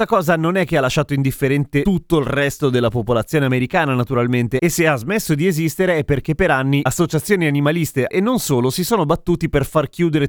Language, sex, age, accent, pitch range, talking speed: Italian, male, 30-49, native, 130-185 Hz, 205 wpm